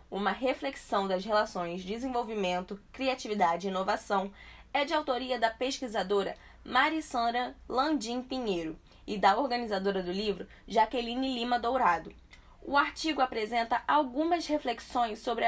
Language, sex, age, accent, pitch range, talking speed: Portuguese, female, 10-29, Brazilian, 200-255 Hz, 115 wpm